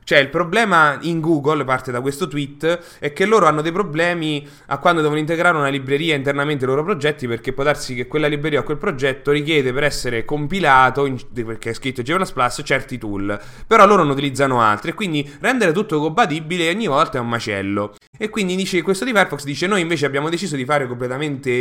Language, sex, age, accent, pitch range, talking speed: English, male, 20-39, Italian, 125-160 Hz, 210 wpm